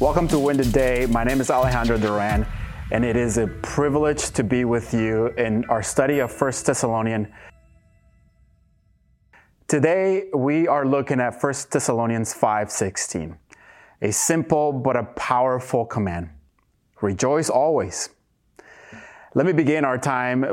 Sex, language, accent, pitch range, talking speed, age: male, English, American, 115-145 Hz, 135 wpm, 30-49